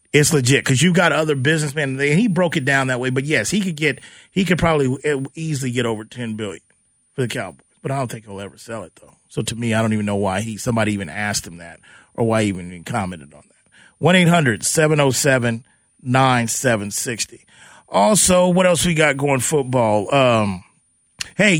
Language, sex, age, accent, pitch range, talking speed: English, male, 30-49, American, 110-145 Hz, 195 wpm